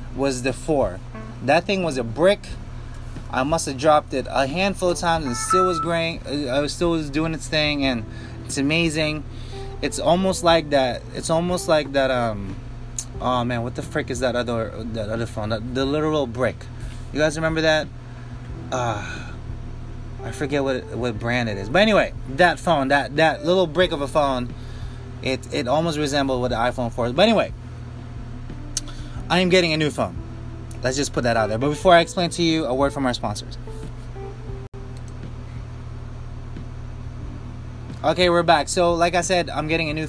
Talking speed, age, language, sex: 185 wpm, 20-39, English, male